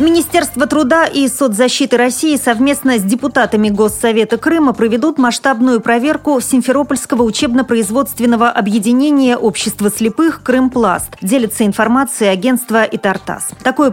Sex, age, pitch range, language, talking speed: female, 30-49, 215-260 Hz, Russian, 105 wpm